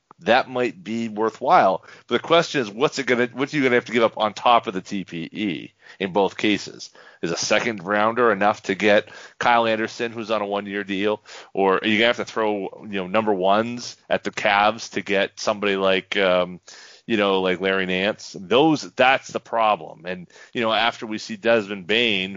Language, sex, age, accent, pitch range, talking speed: English, male, 30-49, American, 95-120 Hz, 205 wpm